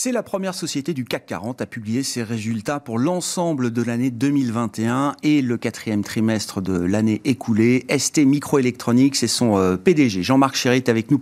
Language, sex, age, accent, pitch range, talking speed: French, male, 40-59, French, 125-160 Hz, 175 wpm